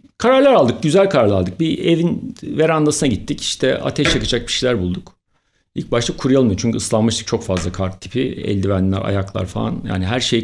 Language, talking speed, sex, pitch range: Turkish, 180 wpm, male, 105-175 Hz